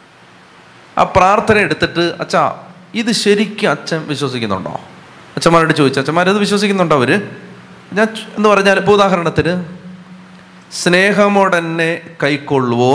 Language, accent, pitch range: Malayalam, native, 140-195 Hz